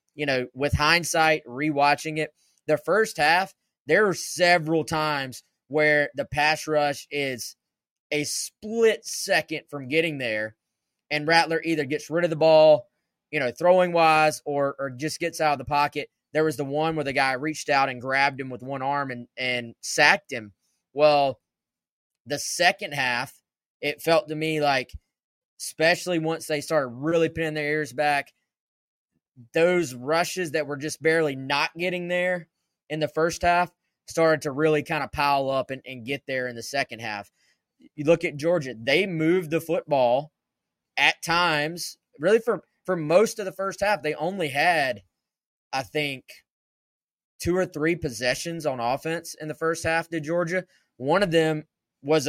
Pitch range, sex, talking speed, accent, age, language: 140-165 Hz, male, 170 wpm, American, 20-39, English